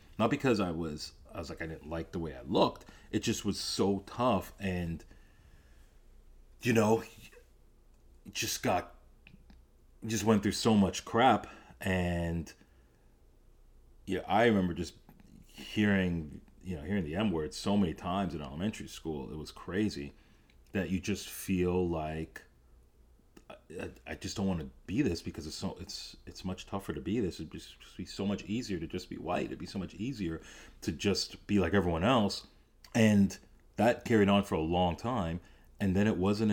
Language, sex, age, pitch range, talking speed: English, male, 30-49, 80-100 Hz, 175 wpm